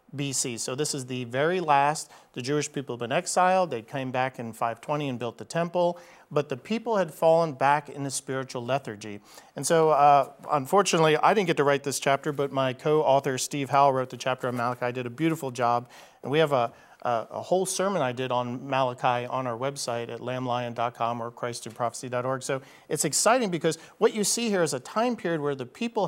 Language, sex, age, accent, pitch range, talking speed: English, male, 40-59, American, 130-175 Hz, 210 wpm